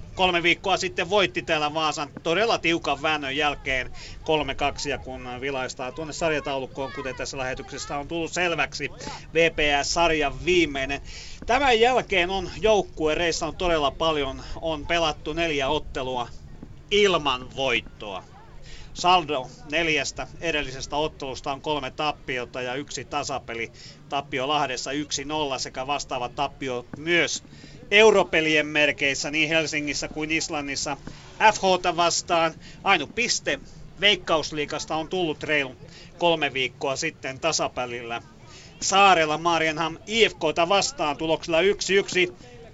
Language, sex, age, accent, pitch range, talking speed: Finnish, male, 40-59, native, 140-175 Hz, 110 wpm